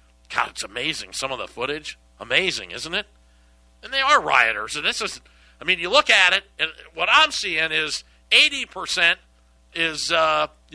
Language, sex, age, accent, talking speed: English, male, 50-69, American, 165 wpm